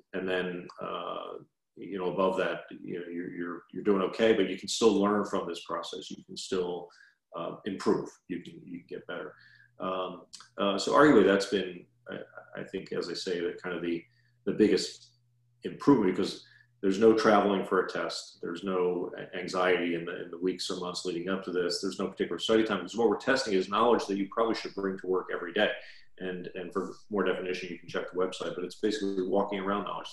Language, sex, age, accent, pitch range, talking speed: English, male, 40-59, American, 90-100 Hz, 215 wpm